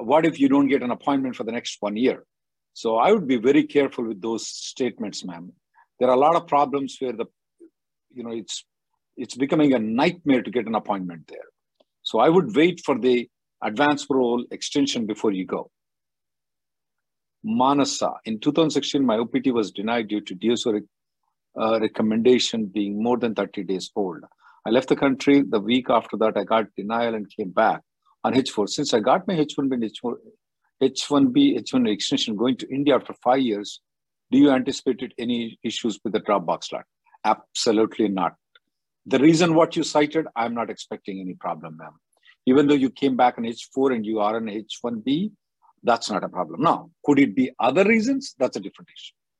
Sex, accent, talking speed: male, Indian, 185 wpm